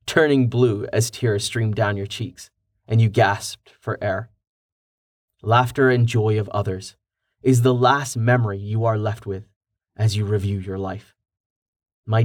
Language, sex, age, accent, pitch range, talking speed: English, male, 30-49, American, 105-125 Hz, 155 wpm